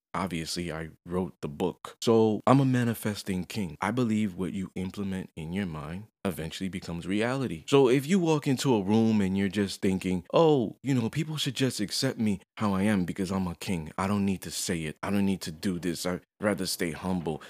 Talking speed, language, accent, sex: 215 wpm, English, American, male